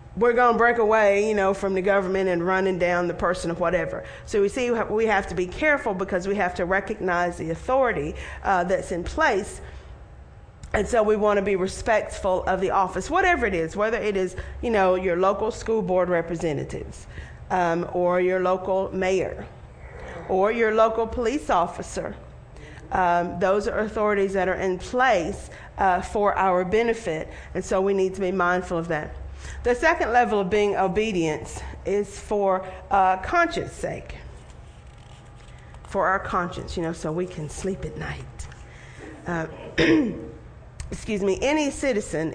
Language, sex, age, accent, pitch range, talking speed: English, female, 40-59, American, 175-215 Hz, 165 wpm